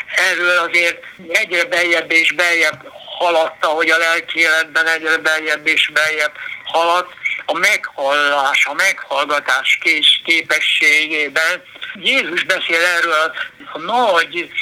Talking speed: 110 wpm